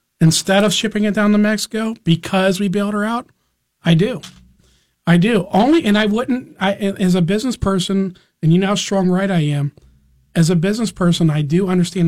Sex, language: male, English